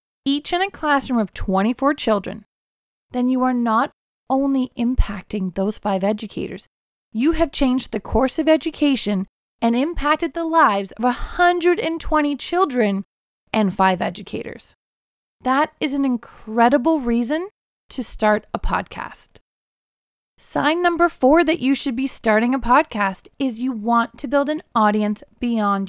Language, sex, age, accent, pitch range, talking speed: English, female, 30-49, American, 215-295 Hz, 140 wpm